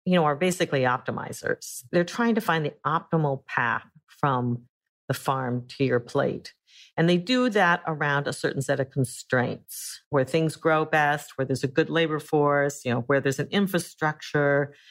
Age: 50-69